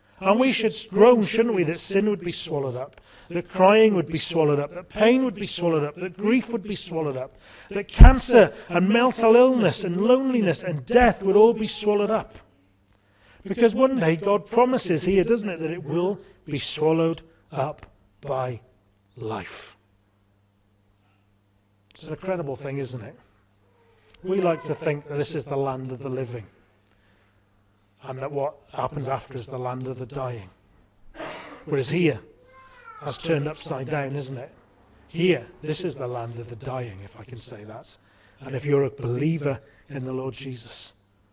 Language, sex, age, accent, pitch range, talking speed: English, male, 40-59, British, 110-175 Hz, 175 wpm